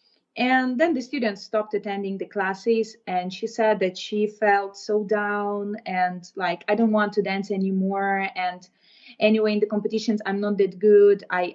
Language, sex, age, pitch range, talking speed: English, female, 20-39, 195-230 Hz, 175 wpm